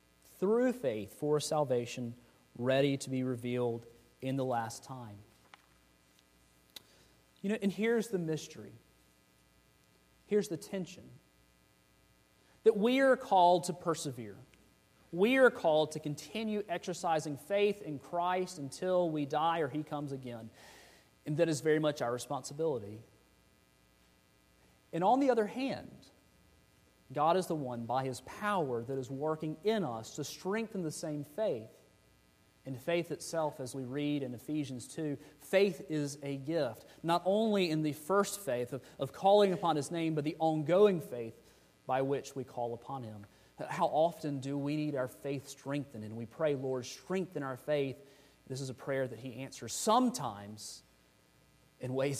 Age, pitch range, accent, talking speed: 30-49, 115-160 Hz, American, 150 wpm